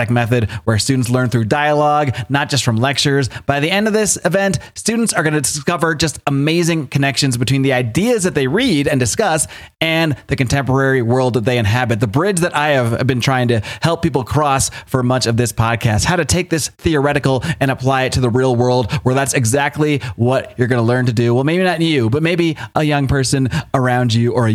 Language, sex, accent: English, male, American